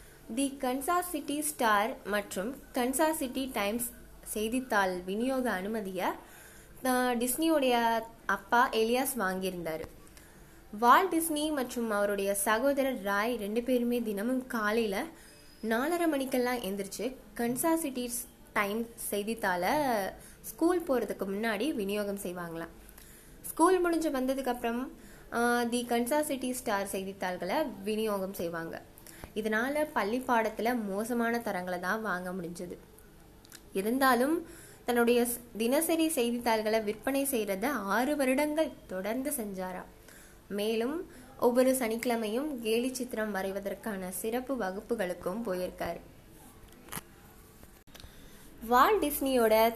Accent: native